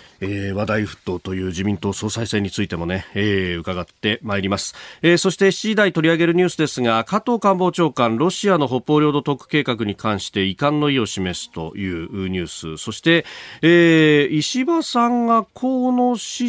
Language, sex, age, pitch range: Japanese, male, 40-59, 105-155 Hz